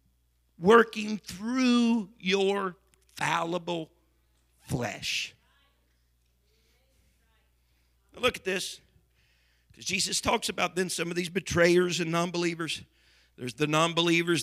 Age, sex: 50-69, male